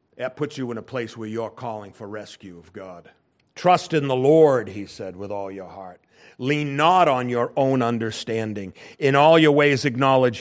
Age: 50-69